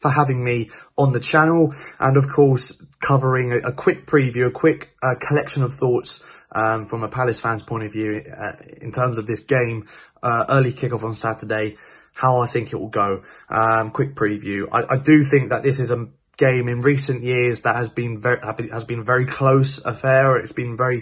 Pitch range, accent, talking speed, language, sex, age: 115-135 Hz, British, 205 wpm, English, male, 20-39